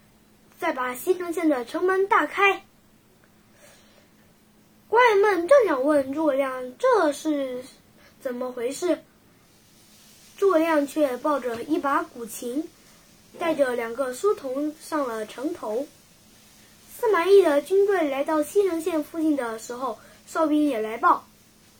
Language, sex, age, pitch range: Chinese, female, 10-29, 275-360 Hz